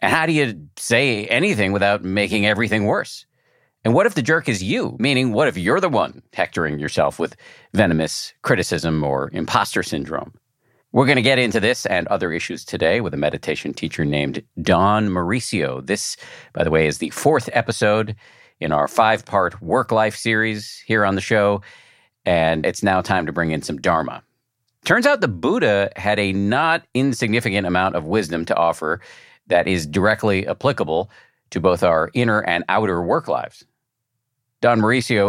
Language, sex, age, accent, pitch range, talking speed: English, male, 50-69, American, 85-115 Hz, 170 wpm